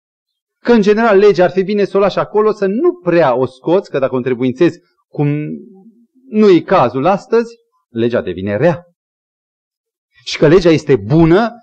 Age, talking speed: 30-49, 165 wpm